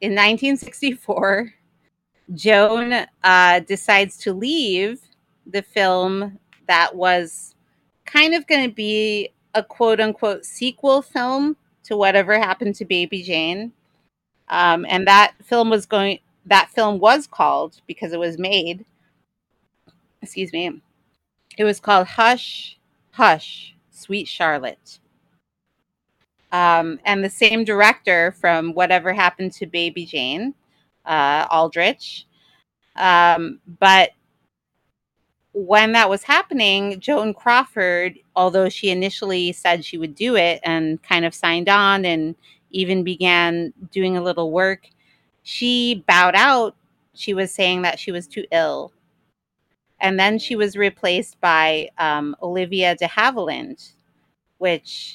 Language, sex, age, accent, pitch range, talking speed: English, female, 30-49, American, 175-215 Hz, 125 wpm